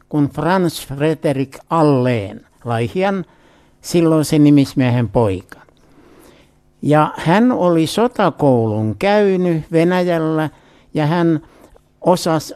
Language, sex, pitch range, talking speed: Finnish, male, 135-185 Hz, 85 wpm